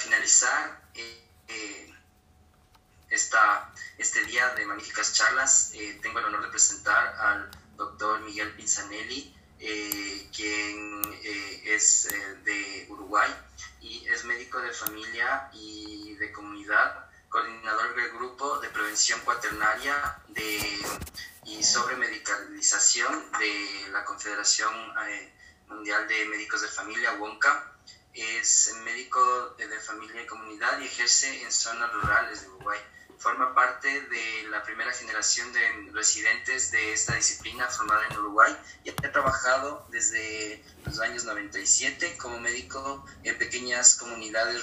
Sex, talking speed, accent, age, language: male, 125 wpm, Mexican, 20-39, Spanish